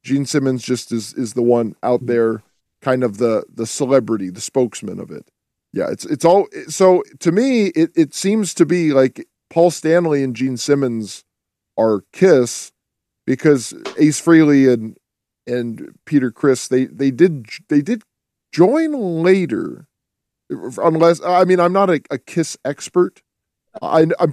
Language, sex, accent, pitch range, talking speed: English, male, American, 115-155 Hz, 155 wpm